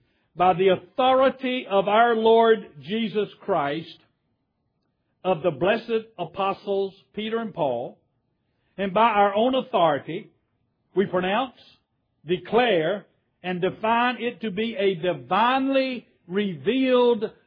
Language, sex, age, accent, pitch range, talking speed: English, male, 60-79, American, 170-235 Hz, 105 wpm